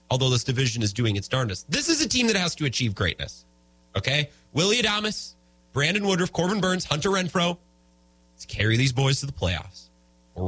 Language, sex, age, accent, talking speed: English, male, 30-49, American, 190 wpm